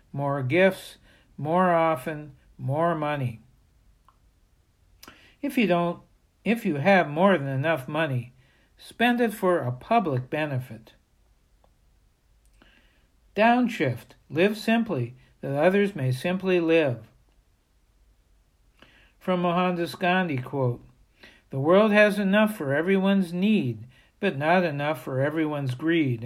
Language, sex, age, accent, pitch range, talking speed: English, male, 60-79, American, 135-195 Hz, 105 wpm